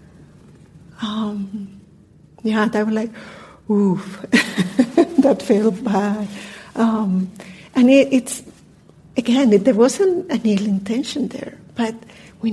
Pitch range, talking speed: 205-240 Hz, 110 wpm